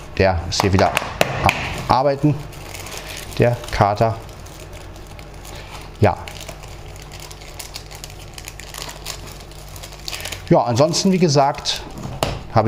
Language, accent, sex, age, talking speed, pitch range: German, German, male, 40-59, 55 wpm, 90-110 Hz